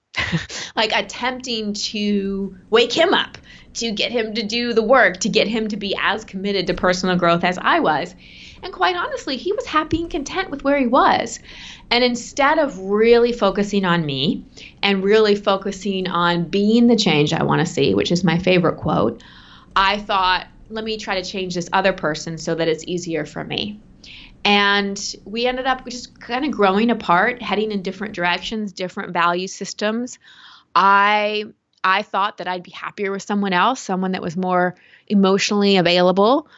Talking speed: 180 wpm